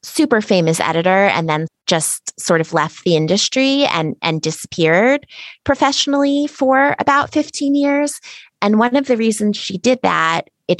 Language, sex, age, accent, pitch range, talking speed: English, female, 20-39, American, 160-210 Hz, 155 wpm